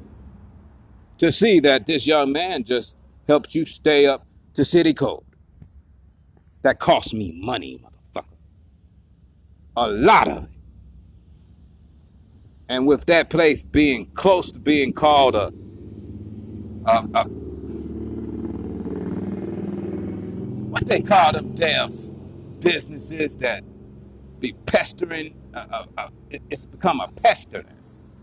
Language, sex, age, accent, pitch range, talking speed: English, male, 40-59, American, 85-135 Hz, 110 wpm